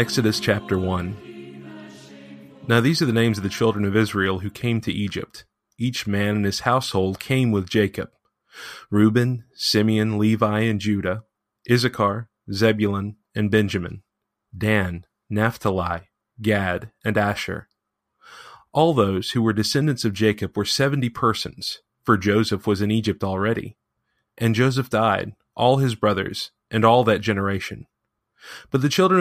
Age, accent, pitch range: 30-49, American, 100-125 Hz